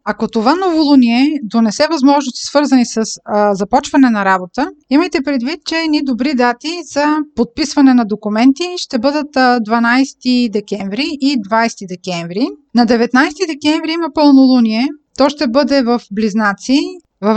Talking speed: 135 wpm